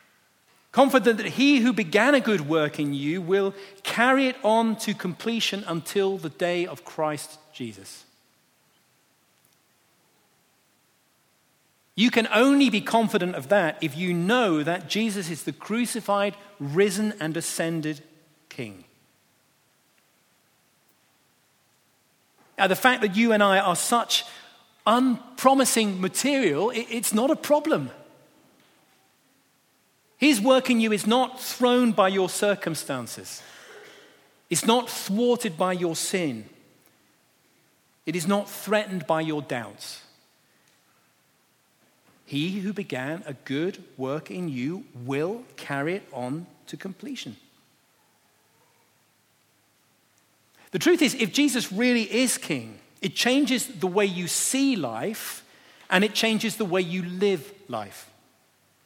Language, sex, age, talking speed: English, male, 40-59, 120 wpm